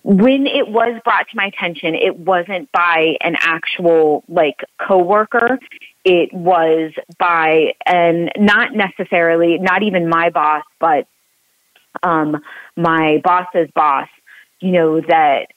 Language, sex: English, female